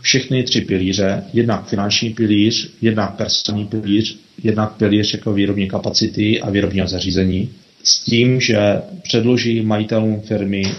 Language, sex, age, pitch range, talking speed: Czech, male, 30-49, 100-110 Hz, 130 wpm